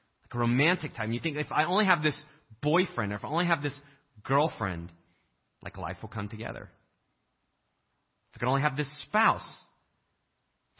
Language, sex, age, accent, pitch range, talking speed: English, male, 30-49, American, 105-150 Hz, 180 wpm